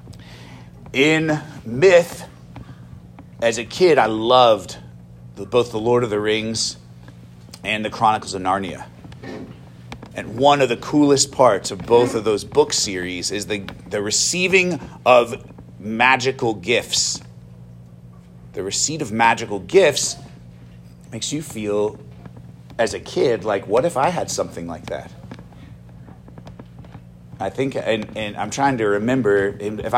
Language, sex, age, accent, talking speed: English, male, 40-59, American, 130 wpm